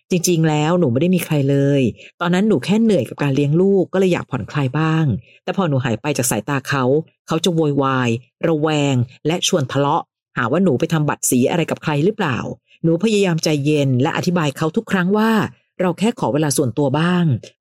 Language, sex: Thai, female